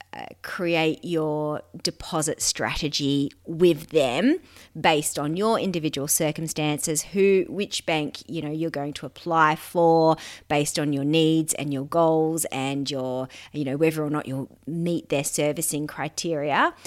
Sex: female